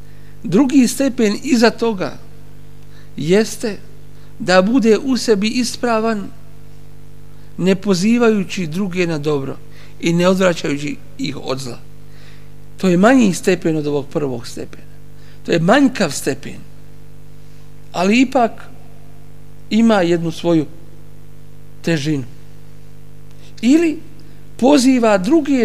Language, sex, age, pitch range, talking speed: English, male, 50-69, 145-215 Hz, 100 wpm